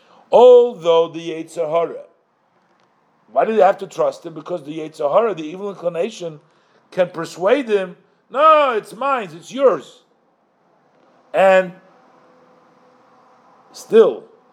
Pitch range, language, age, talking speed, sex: 160-220 Hz, English, 50-69, 105 wpm, male